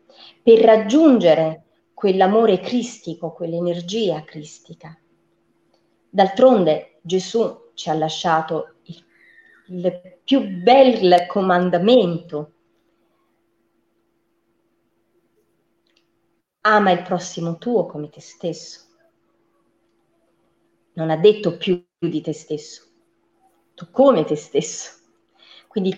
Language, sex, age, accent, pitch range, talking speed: Italian, female, 30-49, native, 160-230 Hz, 80 wpm